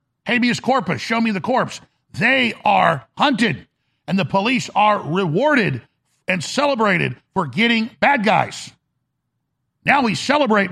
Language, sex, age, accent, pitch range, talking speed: English, male, 50-69, American, 160-220 Hz, 130 wpm